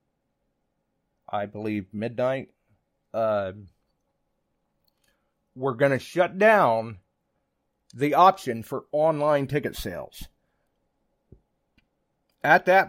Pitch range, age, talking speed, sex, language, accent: 110-145 Hz, 40-59, 80 wpm, male, English, American